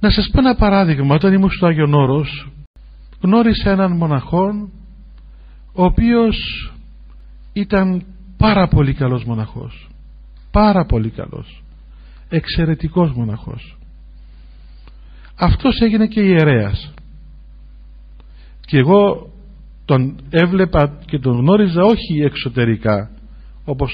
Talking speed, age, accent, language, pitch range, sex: 95 wpm, 50-69, native, Greek, 110-180 Hz, male